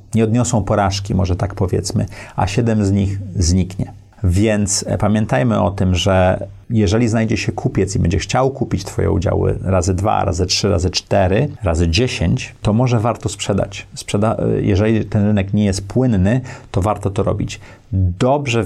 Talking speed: 160 wpm